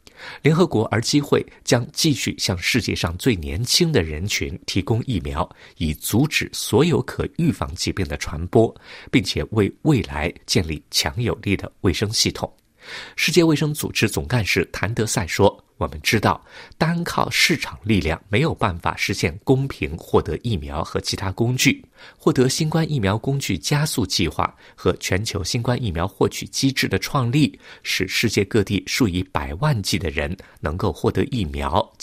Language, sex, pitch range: Chinese, male, 90-130 Hz